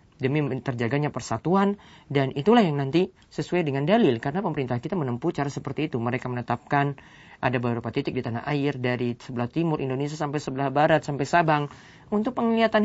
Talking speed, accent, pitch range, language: 175 wpm, native, 120-160 Hz, Indonesian